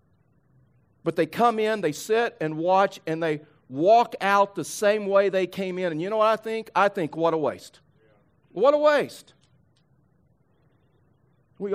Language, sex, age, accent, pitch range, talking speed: English, male, 50-69, American, 130-205 Hz, 170 wpm